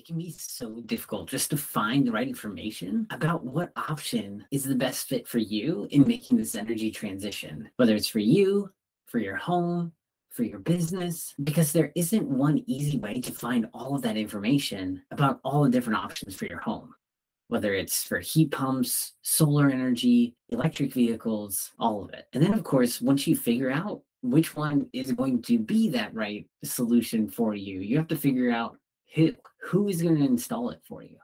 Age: 30-49